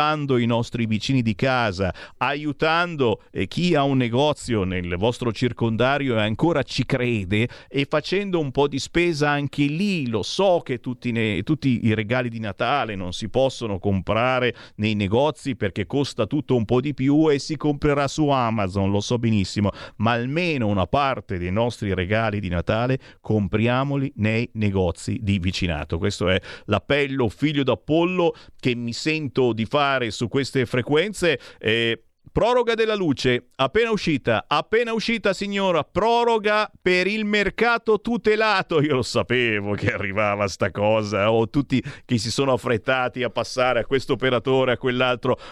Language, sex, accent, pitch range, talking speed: Italian, male, native, 115-175 Hz, 155 wpm